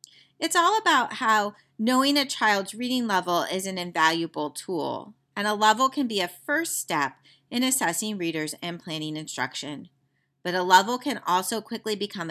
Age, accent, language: 40-59, American, English